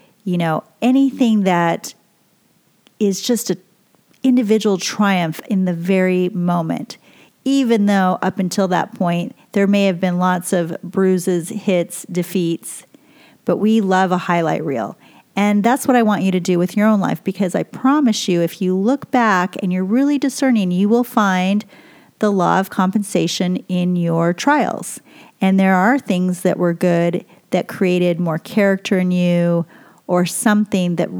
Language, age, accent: English, 40-59, American